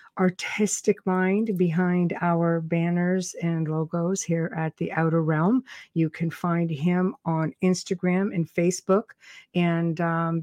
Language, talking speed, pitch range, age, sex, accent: English, 125 wpm, 170-215 Hz, 60-79, female, American